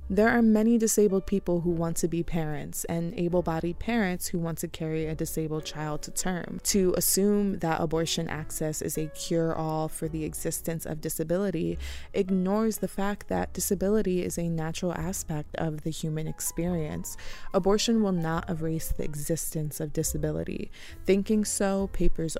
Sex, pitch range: female, 160-185 Hz